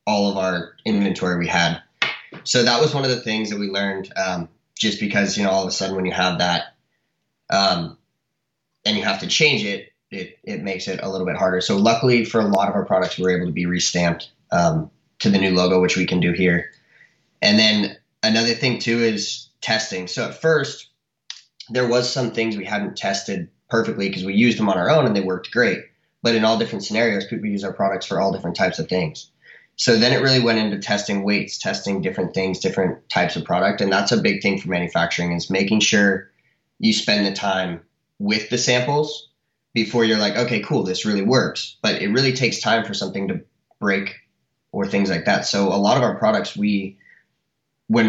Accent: American